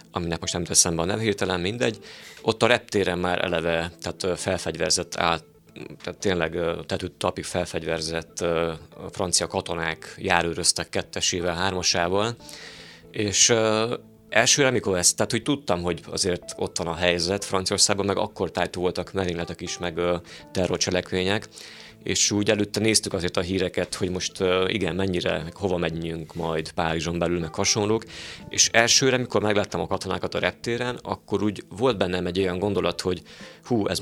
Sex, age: male, 30-49